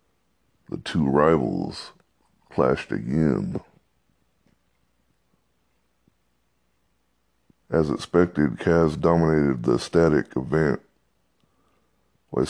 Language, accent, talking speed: English, American, 60 wpm